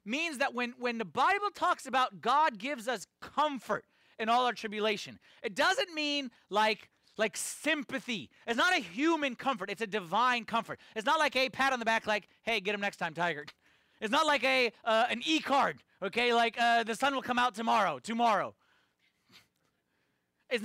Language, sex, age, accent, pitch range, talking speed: English, male, 30-49, American, 190-280 Hz, 185 wpm